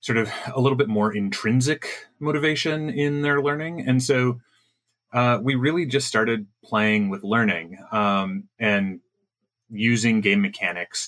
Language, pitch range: English, 100-140 Hz